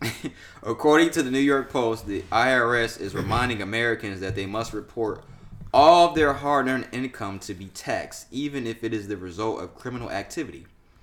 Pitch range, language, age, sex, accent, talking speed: 95-115 Hz, English, 20-39, male, American, 175 wpm